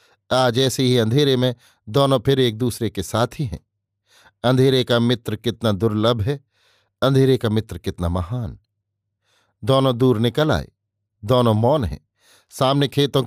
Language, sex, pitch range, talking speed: Hindi, male, 105-135 Hz, 150 wpm